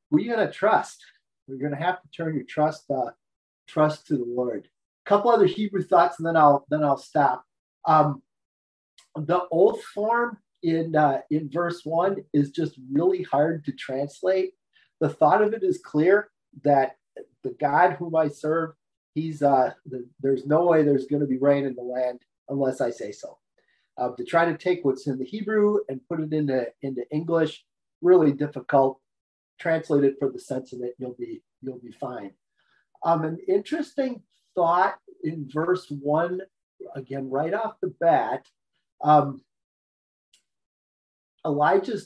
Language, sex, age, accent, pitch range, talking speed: English, male, 40-59, American, 140-180 Hz, 160 wpm